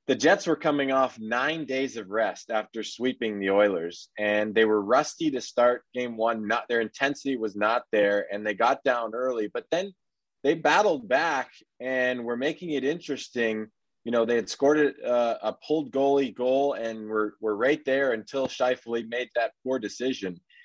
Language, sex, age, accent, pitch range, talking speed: English, male, 20-39, American, 110-135 Hz, 185 wpm